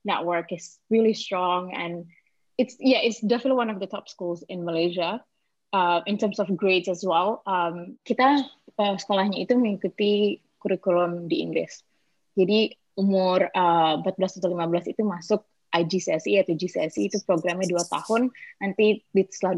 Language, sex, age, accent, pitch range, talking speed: Indonesian, female, 20-39, native, 175-205 Hz, 150 wpm